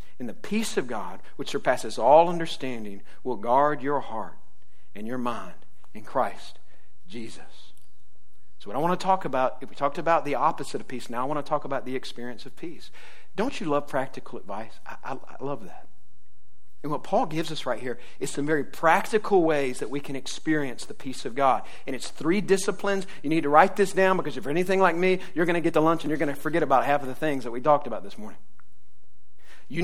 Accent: American